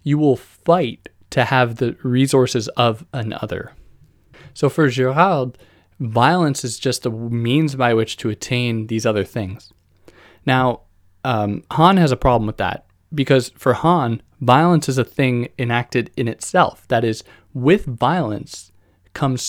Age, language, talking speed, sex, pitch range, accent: 20-39, English, 145 wpm, male, 110-140 Hz, American